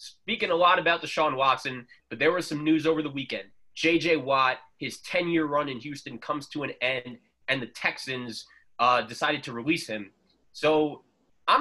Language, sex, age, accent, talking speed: English, male, 20-39, American, 180 wpm